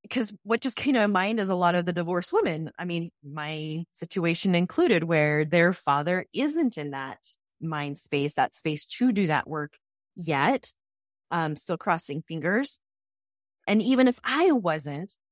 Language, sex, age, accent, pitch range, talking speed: English, female, 20-39, American, 165-230 Hz, 165 wpm